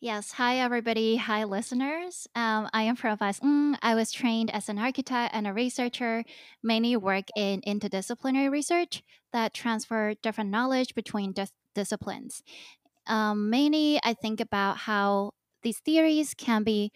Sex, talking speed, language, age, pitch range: female, 140 wpm, English, 20-39, 205-245 Hz